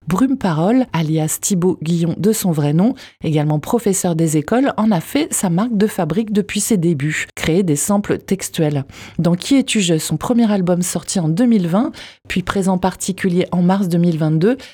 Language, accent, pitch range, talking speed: French, French, 170-215 Hz, 170 wpm